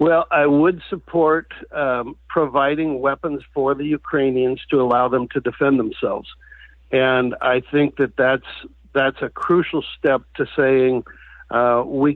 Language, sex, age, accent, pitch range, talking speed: English, male, 60-79, American, 125-145 Hz, 145 wpm